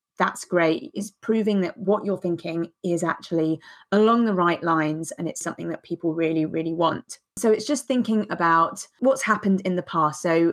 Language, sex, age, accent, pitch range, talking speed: English, female, 30-49, British, 165-200 Hz, 190 wpm